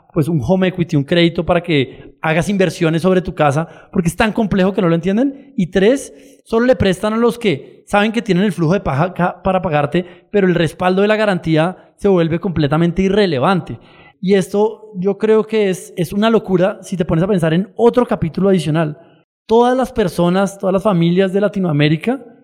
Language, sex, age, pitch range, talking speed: Spanish, male, 20-39, 175-210 Hz, 200 wpm